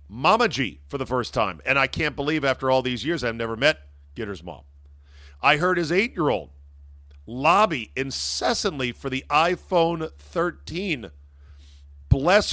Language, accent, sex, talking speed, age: English, American, male, 145 wpm, 50-69